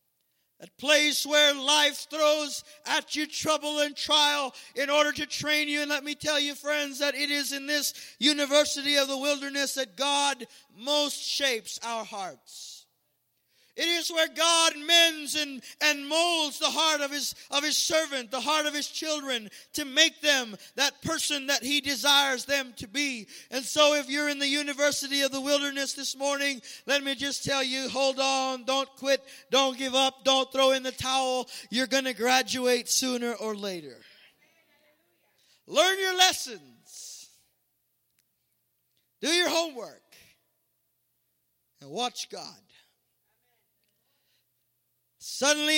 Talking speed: 150 wpm